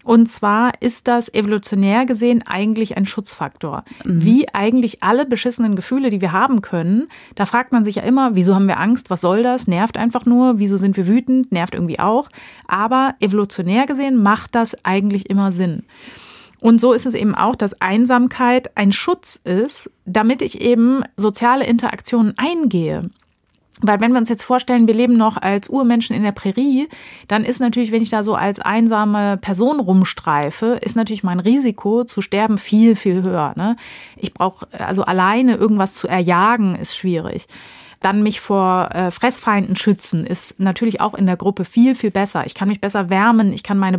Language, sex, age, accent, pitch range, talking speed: German, female, 30-49, German, 195-240 Hz, 180 wpm